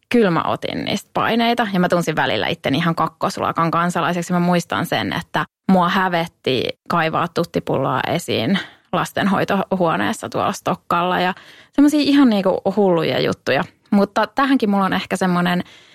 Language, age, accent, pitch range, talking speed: English, 20-39, Finnish, 170-200 Hz, 135 wpm